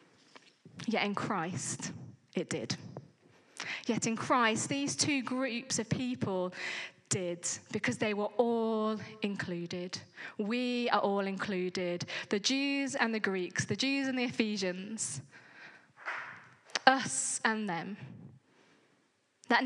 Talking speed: 115 wpm